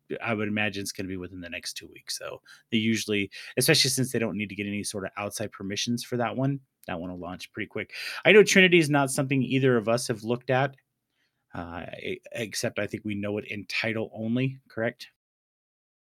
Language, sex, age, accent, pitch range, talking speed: English, male, 30-49, American, 110-140 Hz, 220 wpm